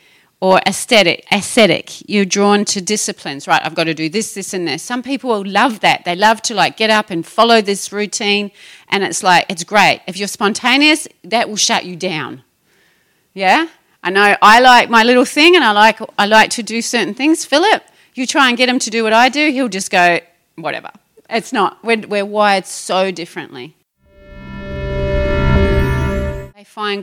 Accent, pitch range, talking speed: Australian, 180-225 Hz, 185 wpm